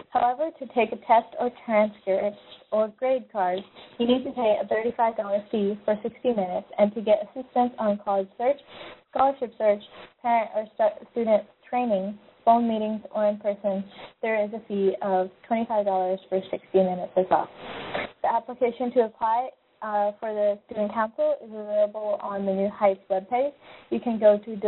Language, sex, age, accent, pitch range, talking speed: English, female, 20-39, American, 200-230 Hz, 170 wpm